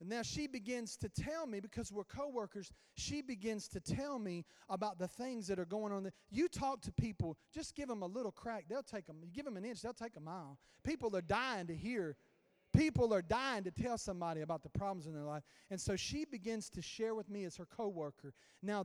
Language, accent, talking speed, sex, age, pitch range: English, American, 230 wpm, male, 40-59, 160-220 Hz